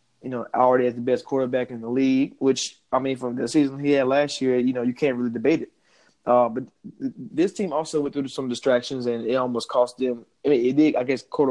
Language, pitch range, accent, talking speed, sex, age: English, 120-135 Hz, American, 260 wpm, male, 20-39